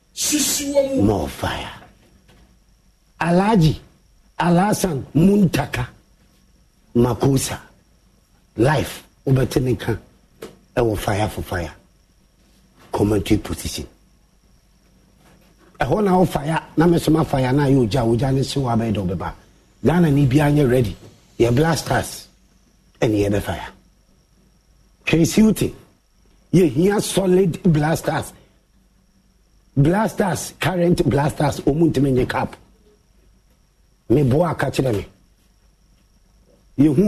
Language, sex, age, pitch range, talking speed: English, male, 50-69, 100-165 Hz, 90 wpm